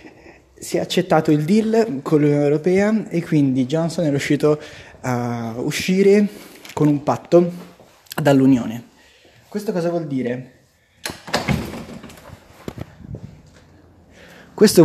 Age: 20-39